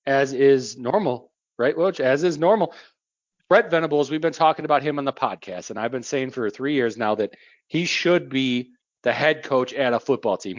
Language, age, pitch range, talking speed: English, 40-59, 120-155 Hz, 210 wpm